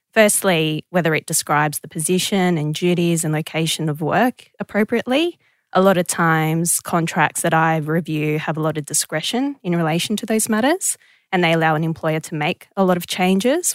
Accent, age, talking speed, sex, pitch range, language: Australian, 20-39, 185 wpm, female, 160-190 Hz, English